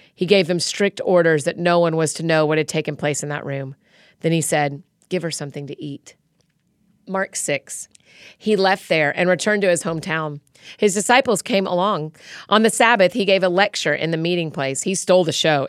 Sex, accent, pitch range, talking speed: female, American, 155-195 Hz, 210 wpm